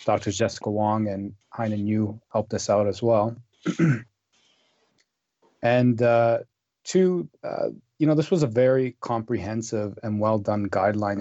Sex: male